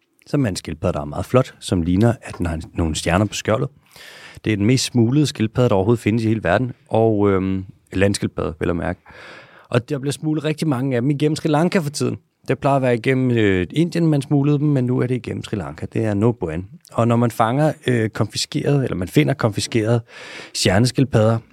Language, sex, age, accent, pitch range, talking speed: Danish, male, 30-49, native, 100-130 Hz, 210 wpm